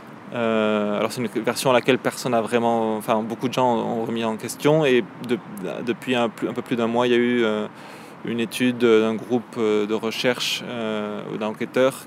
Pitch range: 110-125 Hz